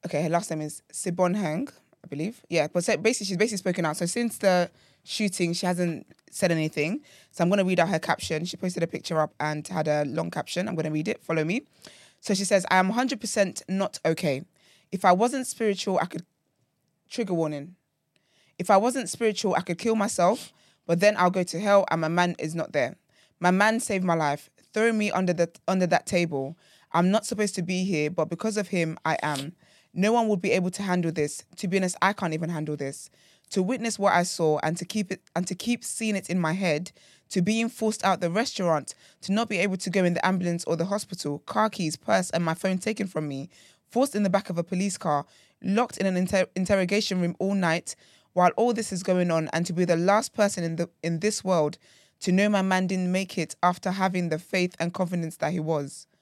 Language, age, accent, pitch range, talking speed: English, 20-39, British, 165-200 Hz, 230 wpm